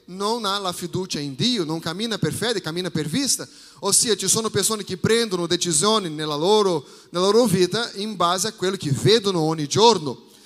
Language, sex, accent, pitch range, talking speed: Italian, male, Brazilian, 185-235 Hz, 185 wpm